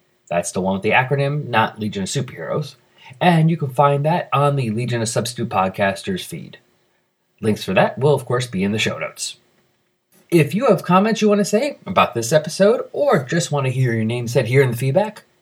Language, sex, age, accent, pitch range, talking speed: English, male, 30-49, American, 120-180 Hz, 220 wpm